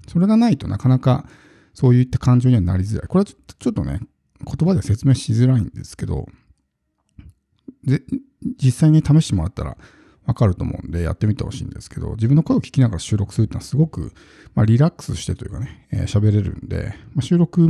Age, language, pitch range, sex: 50-69, Japanese, 100-140 Hz, male